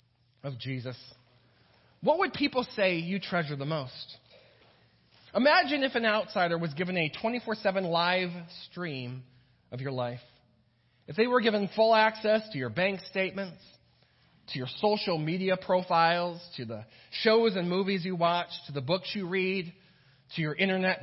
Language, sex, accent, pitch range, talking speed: English, male, American, 125-195 Hz, 150 wpm